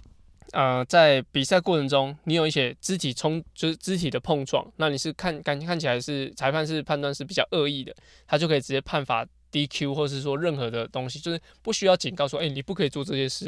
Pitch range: 135-160 Hz